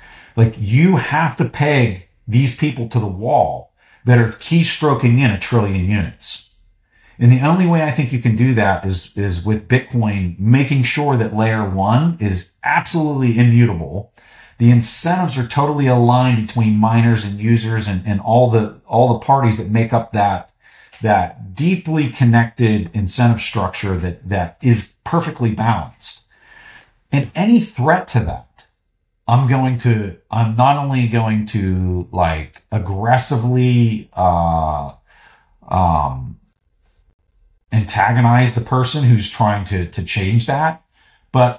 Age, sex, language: 40-59, male, English